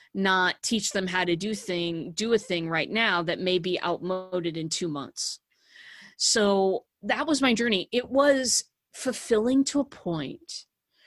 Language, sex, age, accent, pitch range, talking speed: English, female, 30-49, American, 175-215 Hz, 165 wpm